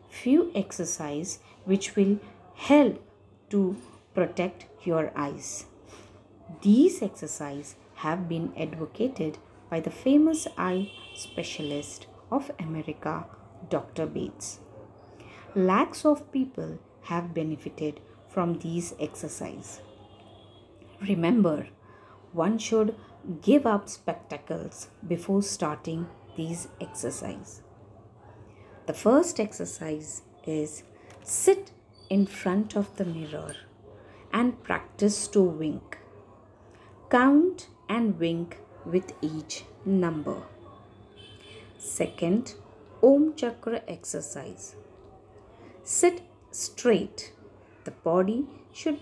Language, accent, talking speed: Marathi, native, 85 wpm